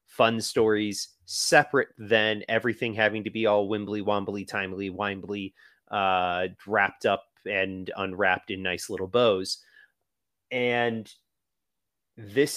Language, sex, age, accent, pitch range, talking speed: English, male, 30-49, American, 95-120 Hz, 115 wpm